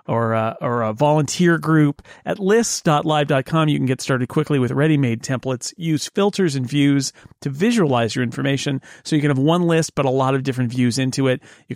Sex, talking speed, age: male, 200 wpm, 40-59